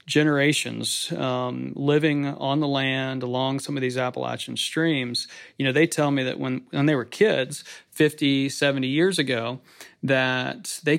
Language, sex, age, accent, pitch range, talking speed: English, male, 40-59, American, 130-150 Hz, 160 wpm